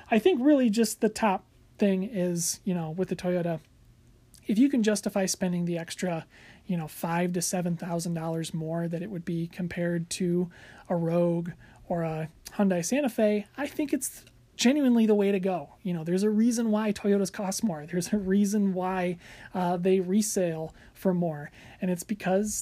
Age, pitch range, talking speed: 30-49, 170-210 Hz, 180 wpm